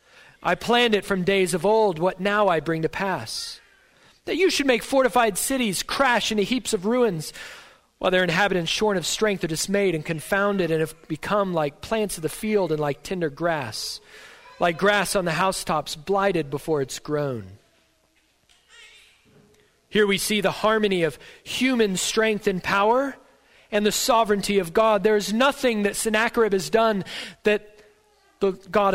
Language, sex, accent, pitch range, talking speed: English, male, American, 175-220 Hz, 165 wpm